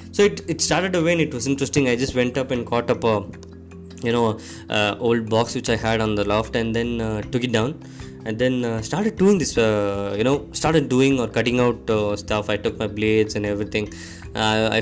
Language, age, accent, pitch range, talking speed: Tamil, 20-39, native, 110-135 Hz, 235 wpm